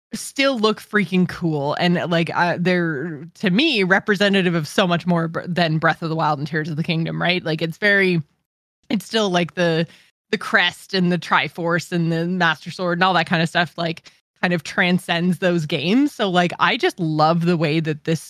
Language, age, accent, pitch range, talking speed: English, 20-39, American, 165-205 Hz, 205 wpm